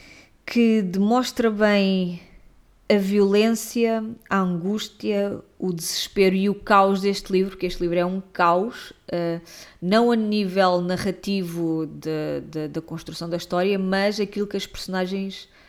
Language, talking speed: Portuguese, 125 wpm